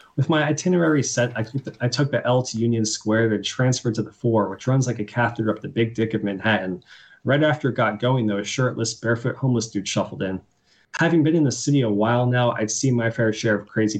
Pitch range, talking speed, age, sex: 105-130 Hz, 235 wpm, 20-39, male